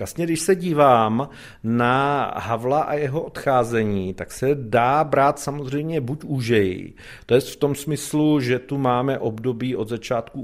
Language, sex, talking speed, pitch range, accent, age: Czech, male, 155 wpm, 115-140 Hz, native, 40-59